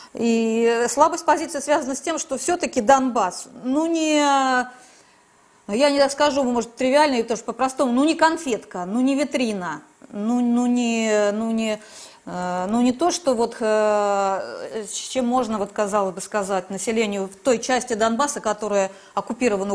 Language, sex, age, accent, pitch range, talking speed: Russian, female, 20-39, native, 210-285 Hz, 145 wpm